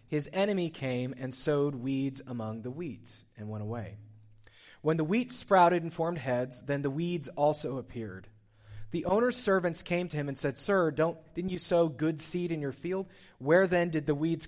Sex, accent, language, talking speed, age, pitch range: male, American, English, 190 wpm, 30-49, 115-170 Hz